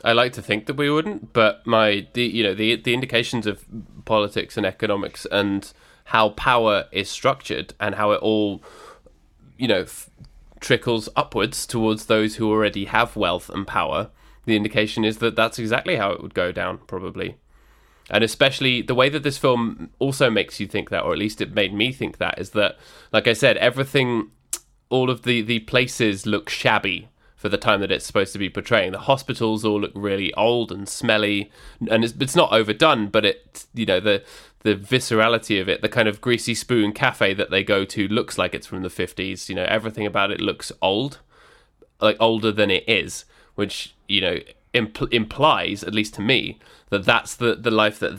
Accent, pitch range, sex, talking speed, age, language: British, 105-120 Hz, male, 200 wpm, 20-39, English